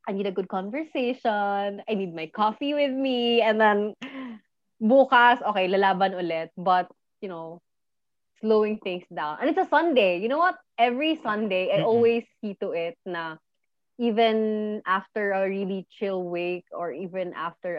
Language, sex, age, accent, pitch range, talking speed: Filipino, female, 20-39, native, 175-220 Hz, 160 wpm